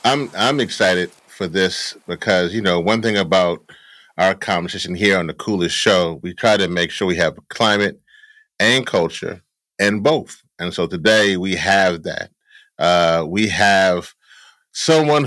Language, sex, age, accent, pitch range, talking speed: English, male, 30-49, American, 95-120 Hz, 155 wpm